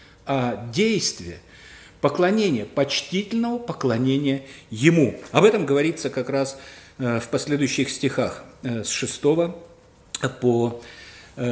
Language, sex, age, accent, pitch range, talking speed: Russian, male, 50-69, native, 120-165 Hz, 90 wpm